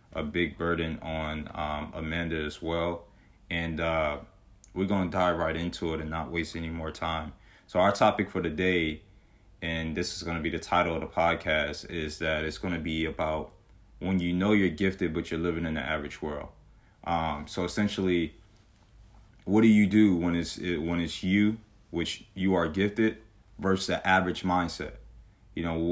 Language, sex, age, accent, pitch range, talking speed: English, male, 20-39, American, 80-100 Hz, 190 wpm